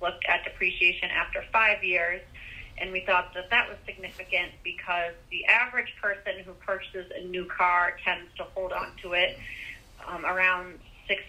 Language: English